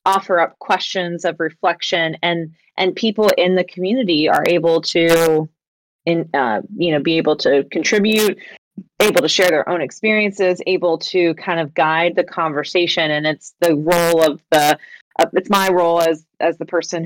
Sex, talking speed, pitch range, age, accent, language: female, 170 wpm, 160-190 Hz, 30-49, American, English